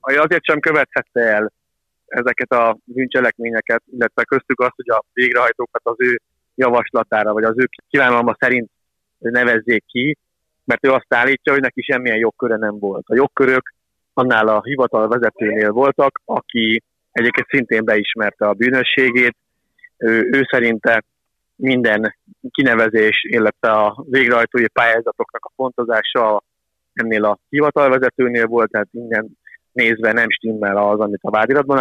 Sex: male